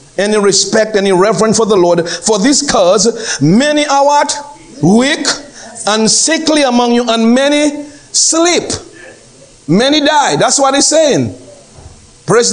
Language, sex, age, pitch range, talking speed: English, male, 50-69, 190-275 Hz, 135 wpm